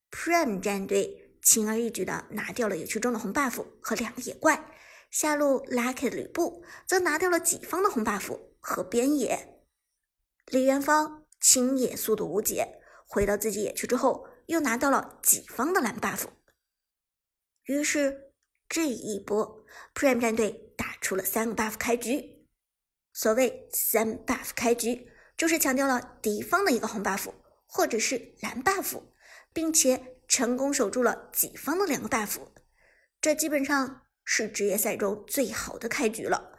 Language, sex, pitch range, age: Chinese, male, 220-305 Hz, 50-69